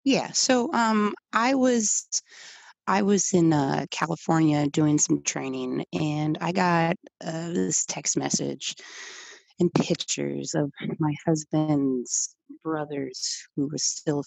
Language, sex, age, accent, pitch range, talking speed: English, female, 30-49, American, 150-205 Hz, 120 wpm